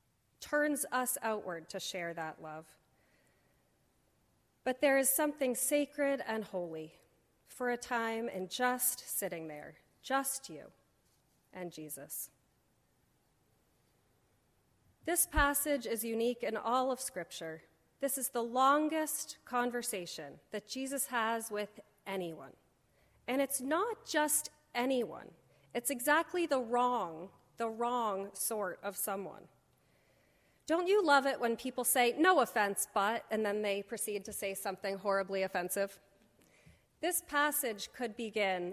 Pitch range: 195-275 Hz